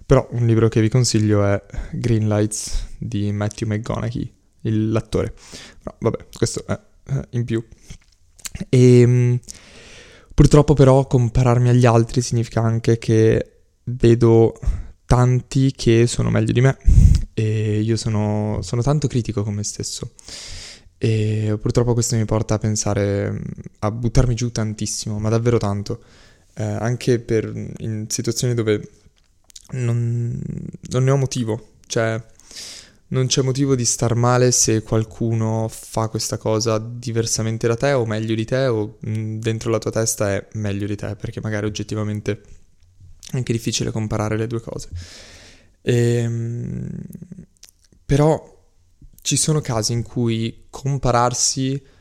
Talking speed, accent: 135 wpm, native